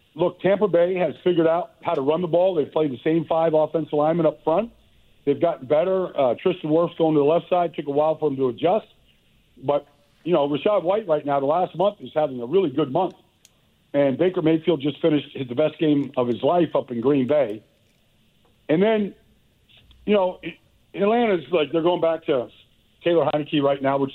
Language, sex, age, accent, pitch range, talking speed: English, male, 60-79, American, 125-165 Hz, 210 wpm